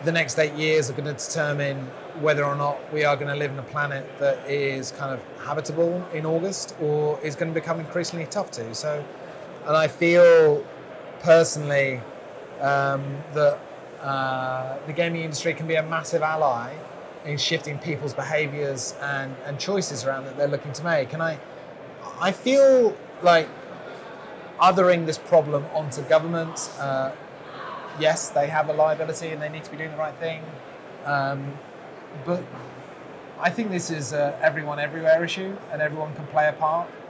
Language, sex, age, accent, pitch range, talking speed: English, male, 30-49, British, 145-165 Hz, 165 wpm